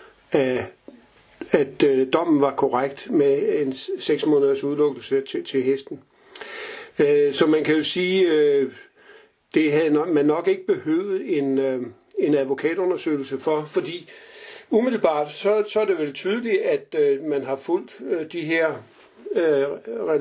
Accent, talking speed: native, 120 wpm